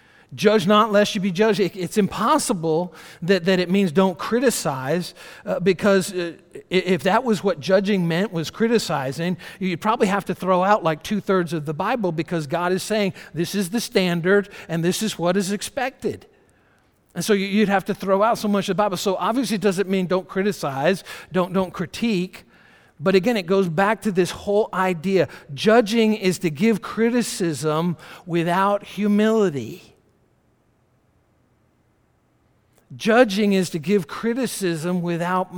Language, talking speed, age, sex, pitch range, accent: English, 160 wpm, 50-69, male, 160-205 Hz, American